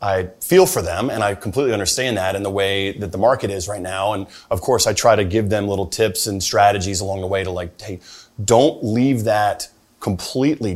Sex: male